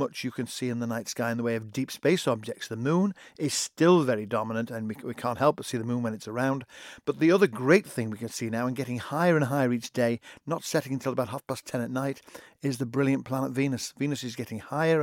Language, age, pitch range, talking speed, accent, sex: English, 50-69, 120-150 Hz, 270 wpm, British, male